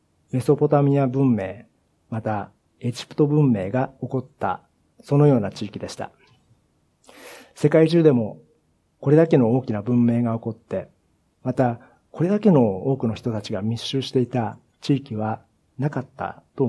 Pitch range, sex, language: 105-145 Hz, male, Japanese